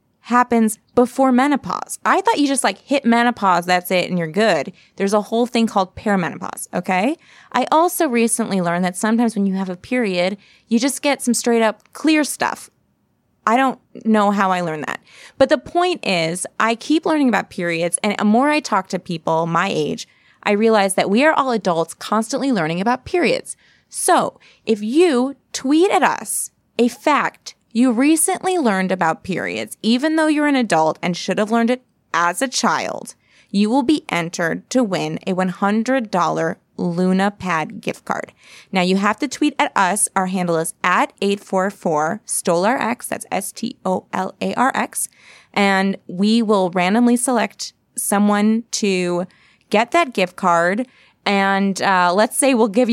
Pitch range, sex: 185-250 Hz, female